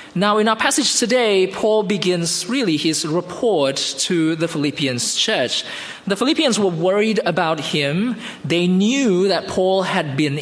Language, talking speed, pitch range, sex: English, 150 wpm, 150-220 Hz, male